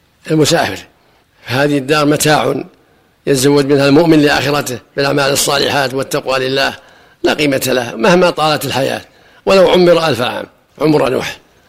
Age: 50-69